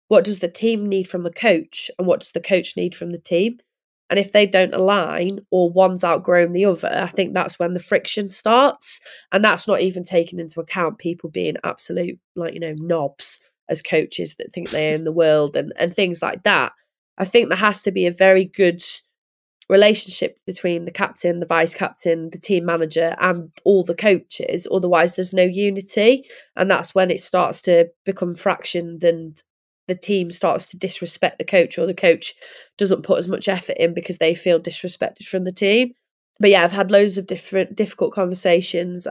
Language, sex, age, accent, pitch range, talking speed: English, female, 20-39, British, 170-195 Hz, 200 wpm